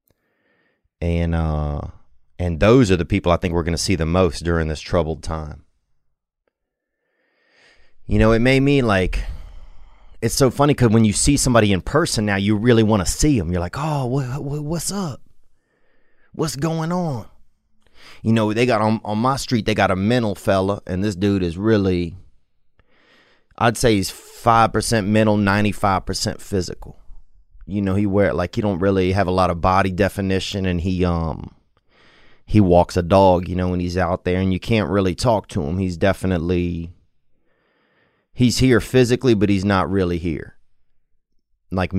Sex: male